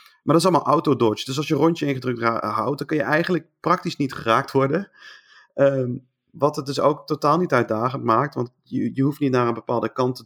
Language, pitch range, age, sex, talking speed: Dutch, 120-145 Hz, 30-49, male, 230 wpm